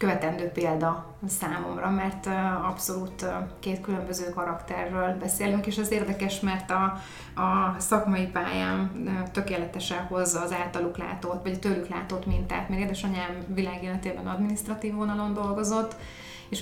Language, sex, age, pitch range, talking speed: Hungarian, female, 20-39, 175-195 Hz, 125 wpm